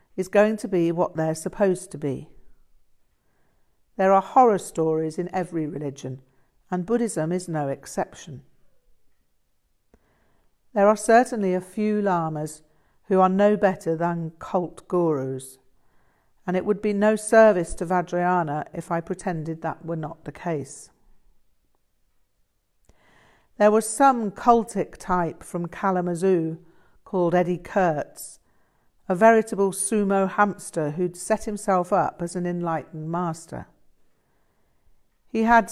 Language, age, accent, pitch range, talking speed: English, 50-69, British, 160-200 Hz, 125 wpm